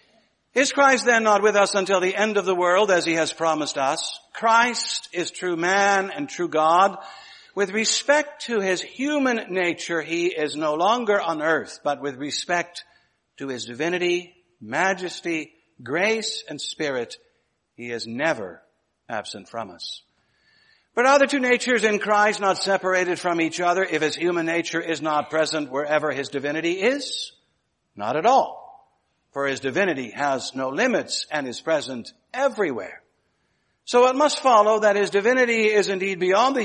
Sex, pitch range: male, 155-225 Hz